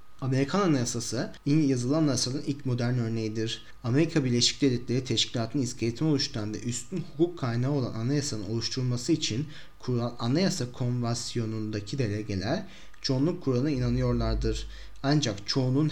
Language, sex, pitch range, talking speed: Turkish, male, 115-145 Hz, 115 wpm